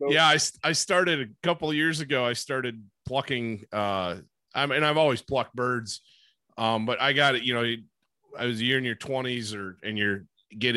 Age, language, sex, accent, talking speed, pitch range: 30-49, English, male, American, 200 wpm, 105-135 Hz